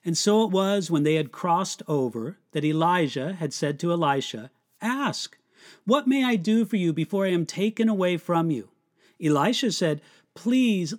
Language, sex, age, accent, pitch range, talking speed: English, male, 40-59, American, 165-235 Hz, 175 wpm